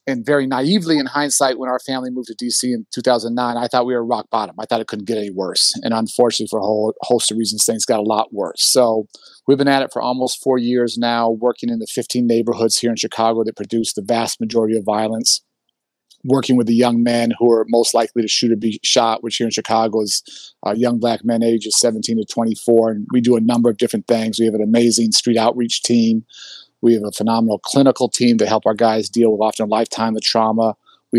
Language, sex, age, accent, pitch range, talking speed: English, male, 40-59, American, 110-120 Hz, 240 wpm